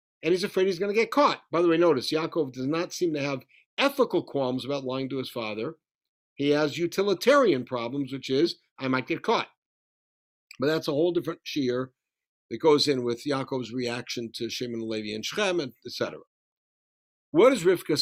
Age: 60-79